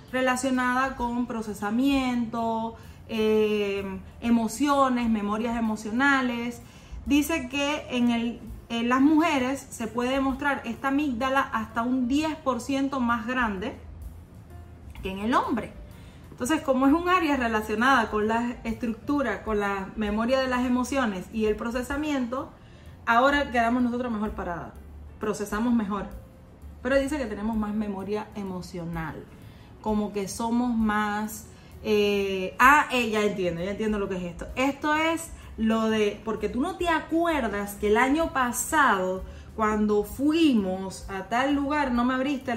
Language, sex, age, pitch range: Spanish, female, 30-49, 210-265 Hz